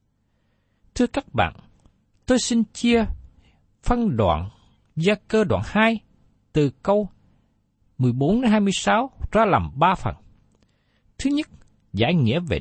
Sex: male